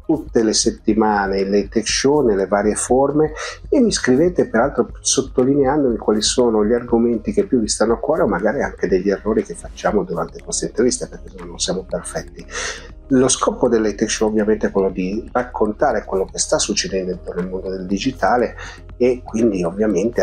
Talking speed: 175 wpm